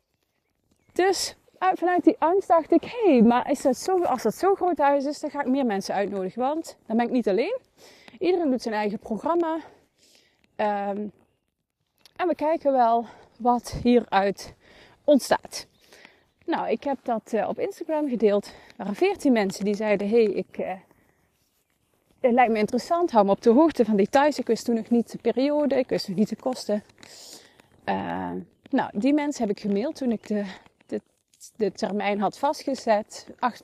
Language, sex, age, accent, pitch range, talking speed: Dutch, female, 30-49, Dutch, 215-315 Hz, 175 wpm